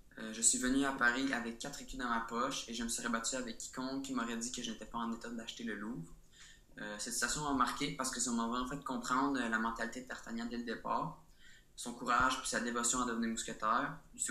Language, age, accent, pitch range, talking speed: French, 20-39, Canadian, 115-130 Hz, 250 wpm